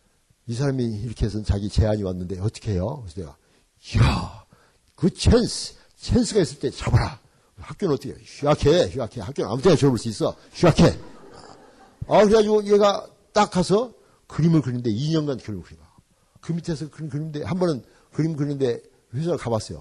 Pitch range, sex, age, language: 110-165 Hz, male, 60-79, Korean